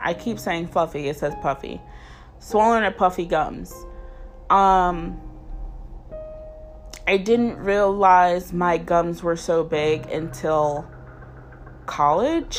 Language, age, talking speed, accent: English, 20-39, 105 wpm, American